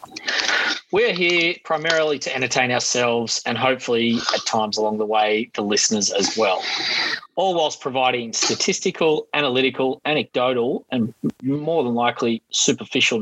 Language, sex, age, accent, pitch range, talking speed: English, male, 30-49, Australian, 120-150 Hz, 125 wpm